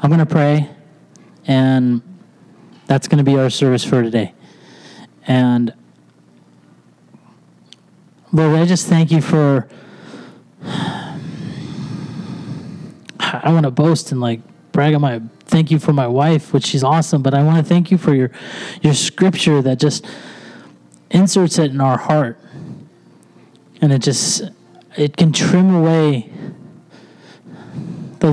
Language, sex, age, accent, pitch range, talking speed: English, male, 30-49, American, 135-170 Hz, 130 wpm